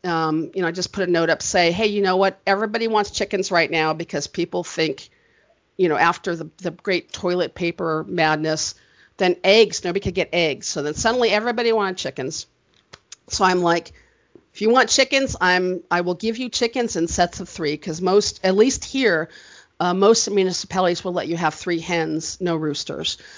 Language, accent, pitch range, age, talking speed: English, American, 170-215 Hz, 50-69, 195 wpm